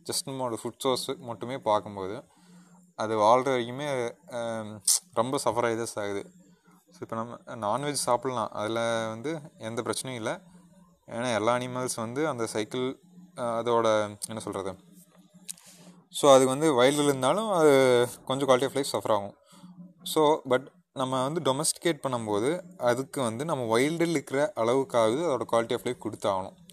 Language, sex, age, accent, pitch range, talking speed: Tamil, male, 30-49, native, 115-160 Hz, 135 wpm